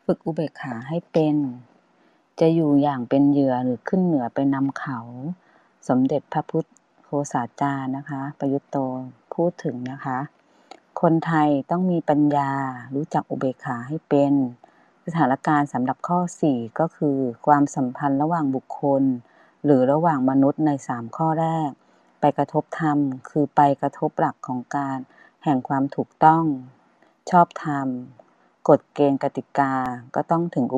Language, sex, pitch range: Thai, female, 135-160 Hz